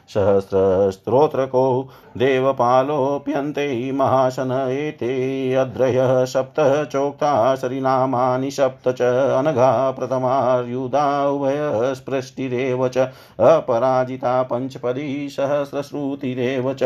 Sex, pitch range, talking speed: male, 130-140 Hz, 40 wpm